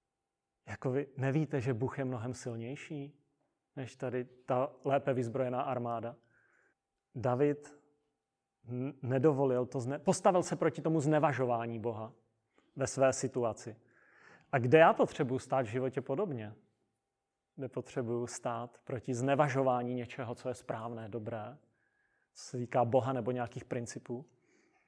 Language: Czech